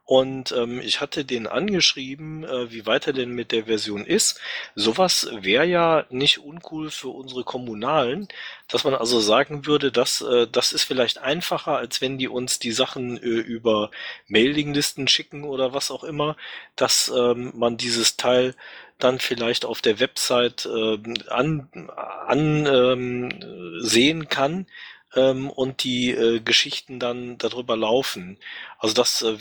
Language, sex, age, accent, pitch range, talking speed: German, male, 40-59, German, 110-135 Hz, 145 wpm